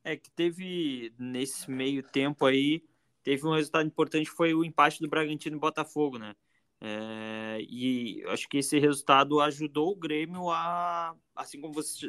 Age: 20-39